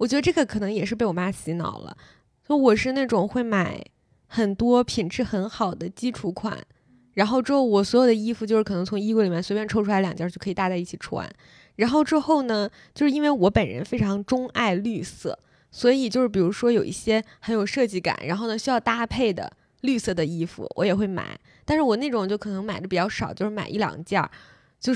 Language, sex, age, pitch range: Chinese, female, 20-39, 185-240 Hz